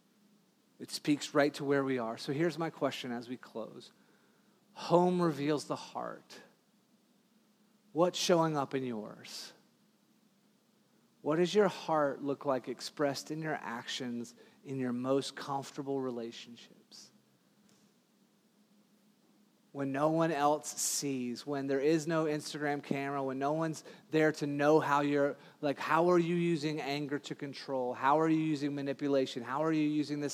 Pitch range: 140-185 Hz